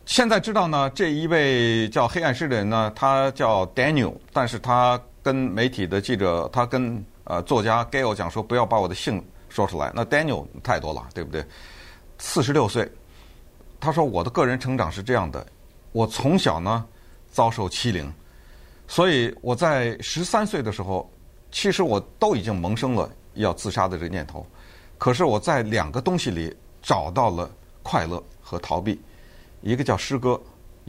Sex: male